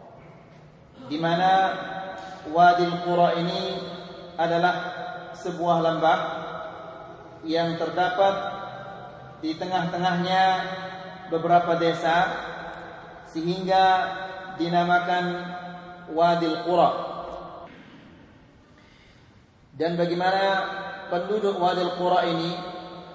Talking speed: 60 wpm